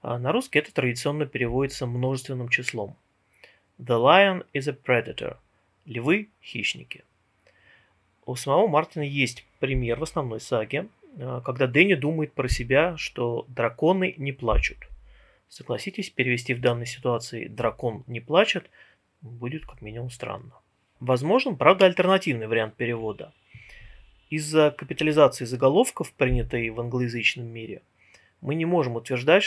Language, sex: Russian, male